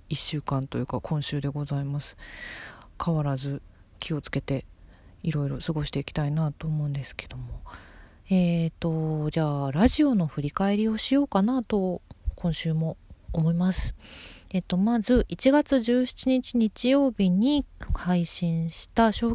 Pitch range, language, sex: 150-210 Hz, Japanese, female